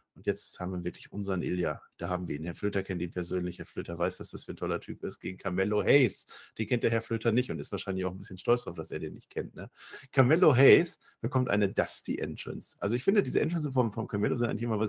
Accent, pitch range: German, 100-140 Hz